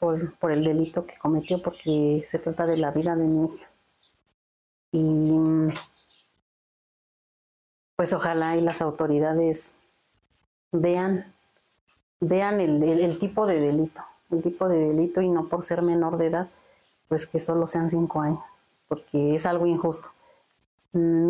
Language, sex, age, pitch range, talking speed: Spanish, female, 30-49, 165-260 Hz, 145 wpm